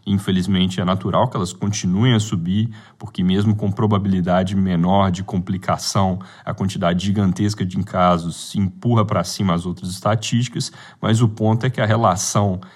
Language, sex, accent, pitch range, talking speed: Portuguese, male, Brazilian, 95-110 Hz, 160 wpm